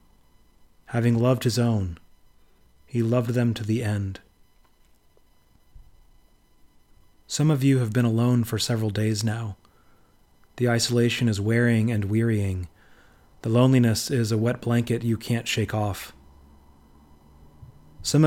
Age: 30-49